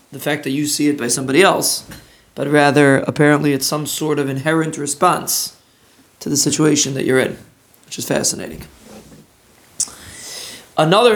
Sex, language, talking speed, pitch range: male, English, 150 wpm, 145-170 Hz